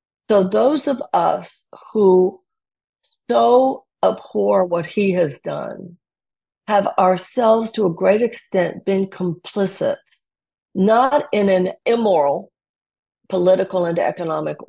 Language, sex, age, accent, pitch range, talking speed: English, female, 50-69, American, 175-230 Hz, 105 wpm